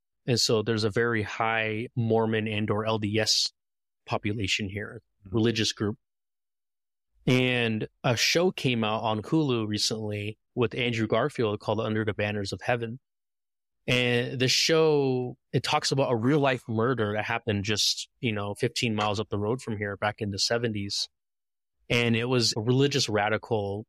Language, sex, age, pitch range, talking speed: English, male, 20-39, 105-130 Hz, 160 wpm